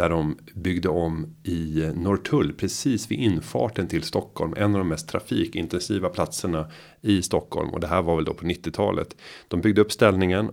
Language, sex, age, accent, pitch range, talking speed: Swedish, male, 30-49, native, 85-105 Hz, 175 wpm